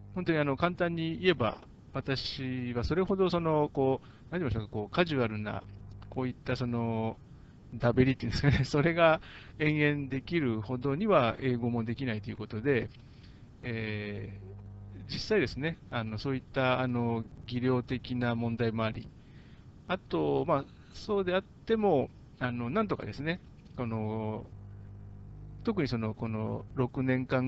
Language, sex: Japanese, male